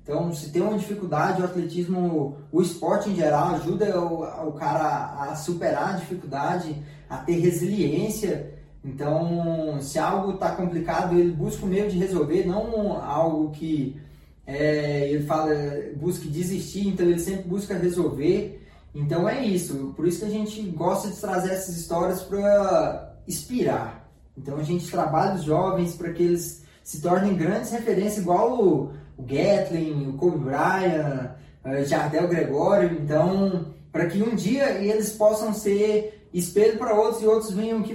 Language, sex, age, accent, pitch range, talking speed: Portuguese, male, 20-39, Brazilian, 155-195 Hz, 160 wpm